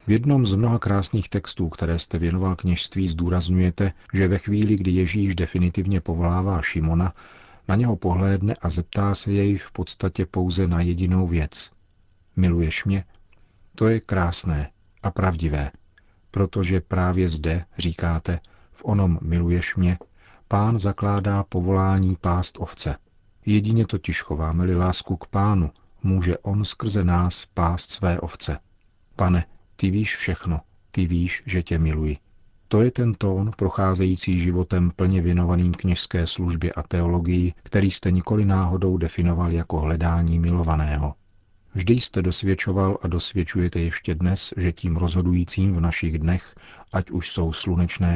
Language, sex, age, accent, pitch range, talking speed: Czech, male, 40-59, native, 85-95 Hz, 140 wpm